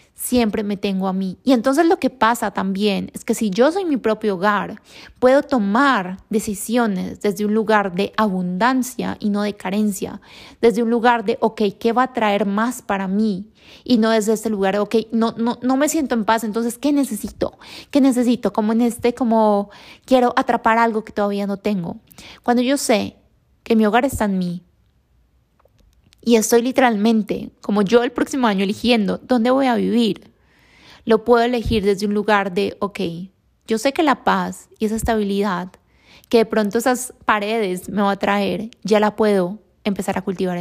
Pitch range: 205-235 Hz